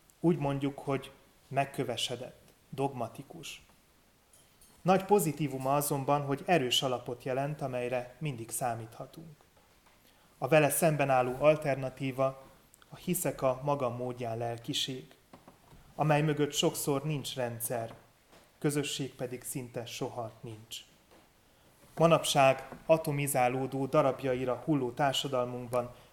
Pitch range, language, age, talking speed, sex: 125-145 Hz, Hungarian, 30-49, 90 wpm, male